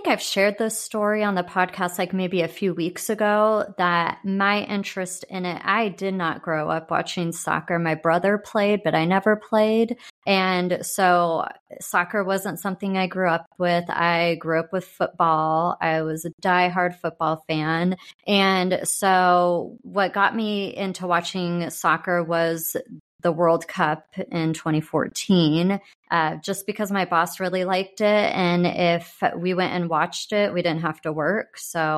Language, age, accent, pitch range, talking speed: English, 30-49, American, 170-200 Hz, 165 wpm